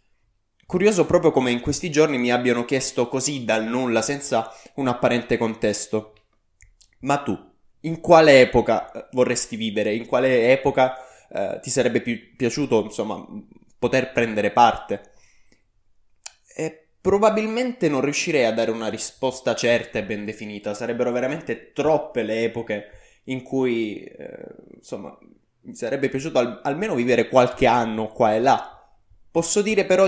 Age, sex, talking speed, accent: 20-39, male, 135 wpm, native